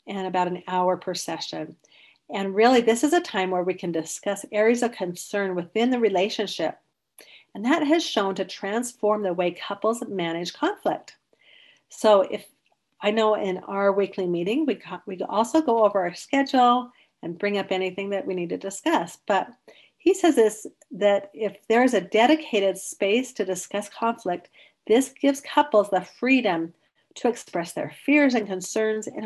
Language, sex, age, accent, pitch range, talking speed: English, female, 40-59, American, 185-245 Hz, 170 wpm